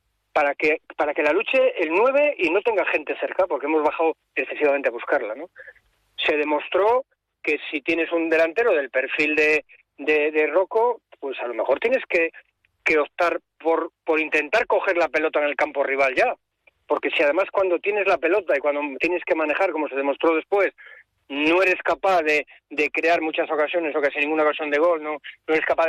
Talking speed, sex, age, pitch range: 200 wpm, male, 40-59, 150-185 Hz